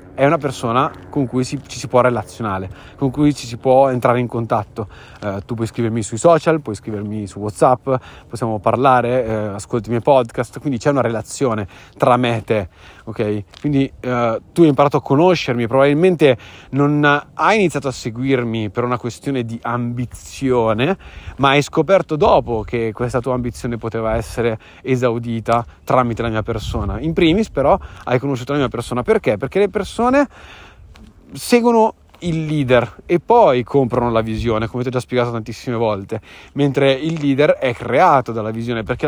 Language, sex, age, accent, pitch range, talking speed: Italian, male, 30-49, native, 115-145 Hz, 170 wpm